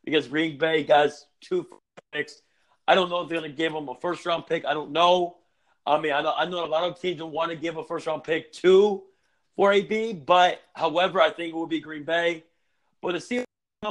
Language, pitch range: English, 165-225 Hz